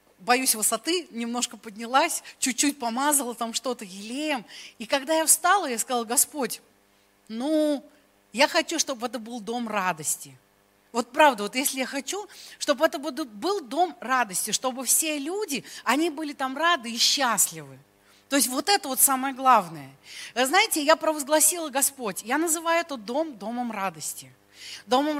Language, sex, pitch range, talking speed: Russian, female, 235-315 Hz, 150 wpm